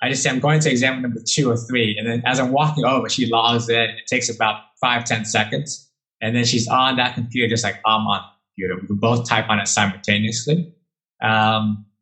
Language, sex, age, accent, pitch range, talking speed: English, male, 20-39, American, 115-140 Hz, 225 wpm